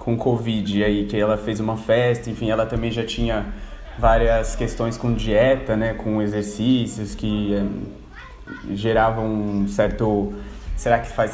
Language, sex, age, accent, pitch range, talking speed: Portuguese, male, 20-39, Brazilian, 110-130 Hz, 150 wpm